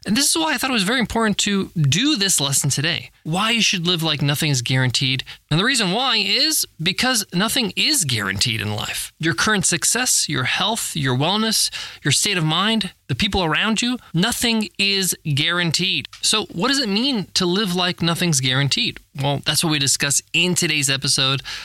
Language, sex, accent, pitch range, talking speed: English, male, American, 145-210 Hz, 190 wpm